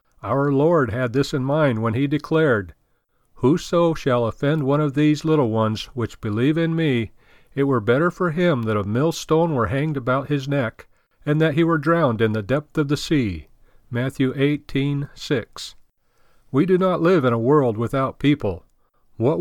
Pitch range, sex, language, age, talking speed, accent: 120-160 Hz, male, English, 50-69, 180 wpm, American